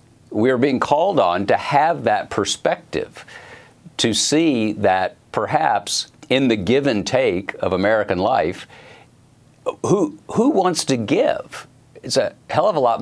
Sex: male